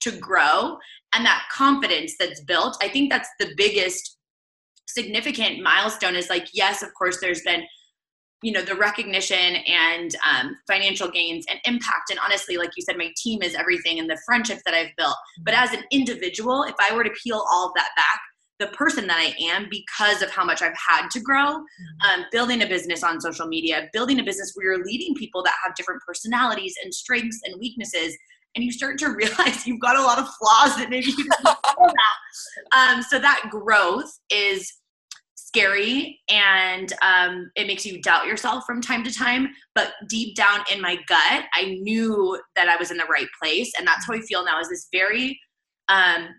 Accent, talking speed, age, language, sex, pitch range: American, 200 wpm, 20-39, English, female, 180-250 Hz